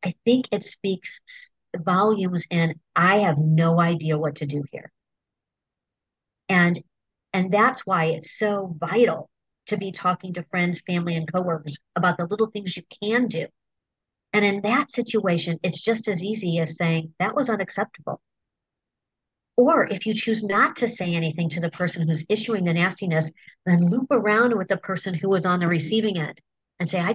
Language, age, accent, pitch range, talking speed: English, 50-69, American, 165-210 Hz, 175 wpm